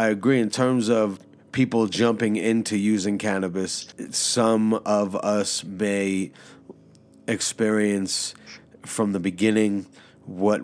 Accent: American